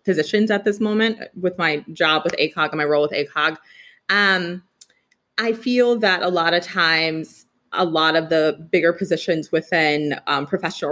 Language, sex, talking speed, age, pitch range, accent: English, female, 170 wpm, 20-39, 150-185 Hz, American